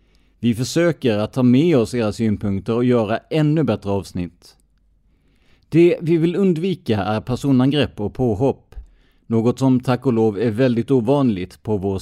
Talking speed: 155 wpm